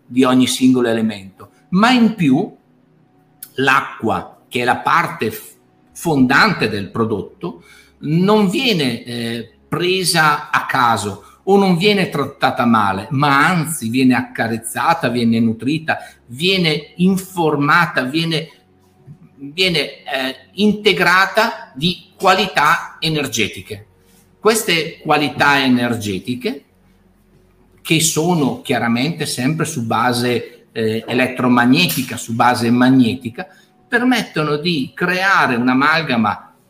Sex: male